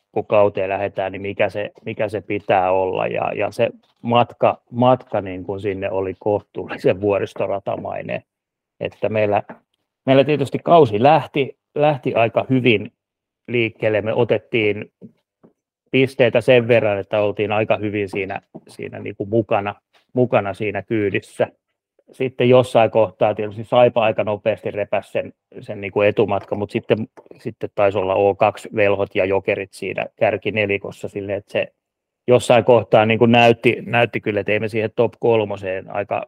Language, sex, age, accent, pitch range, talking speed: Finnish, male, 30-49, native, 100-125 Hz, 145 wpm